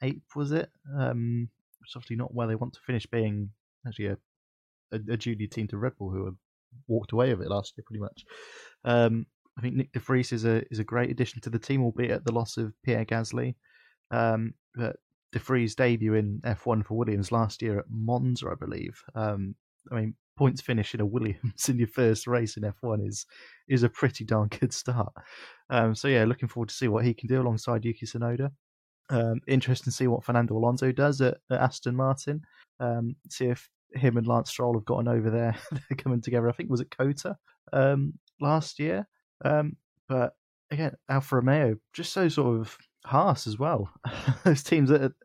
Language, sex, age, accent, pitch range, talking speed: English, male, 20-39, British, 115-130 Hz, 205 wpm